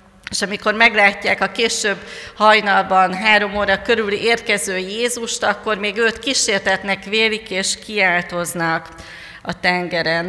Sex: female